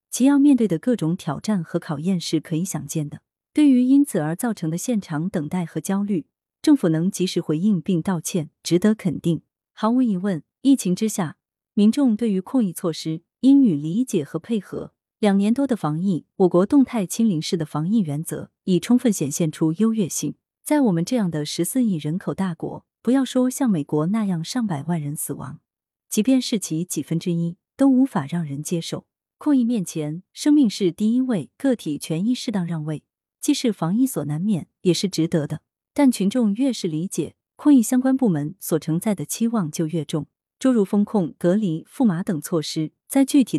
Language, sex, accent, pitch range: Chinese, female, native, 160-225 Hz